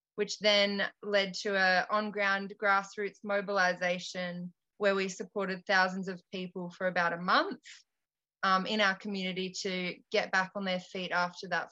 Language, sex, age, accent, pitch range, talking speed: English, female, 20-39, Australian, 185-205 Hz, 155 wpm